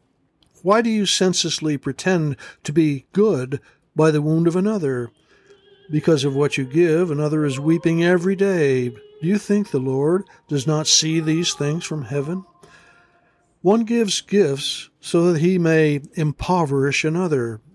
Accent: American